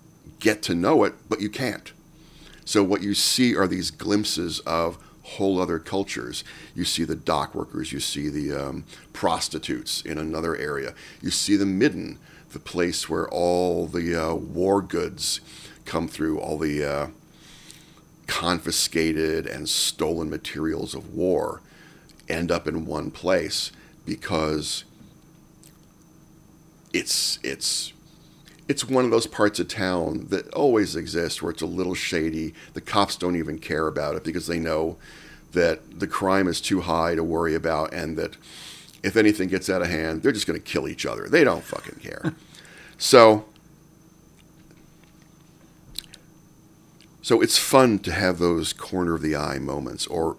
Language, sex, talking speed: English, male, 150 wpm